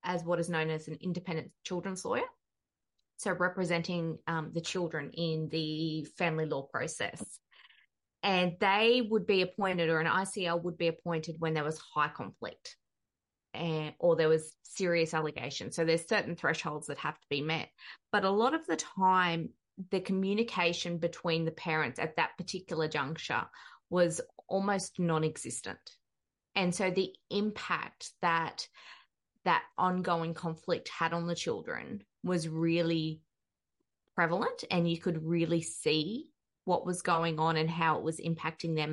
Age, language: 20-39, English